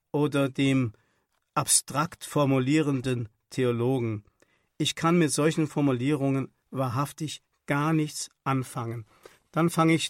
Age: 50-69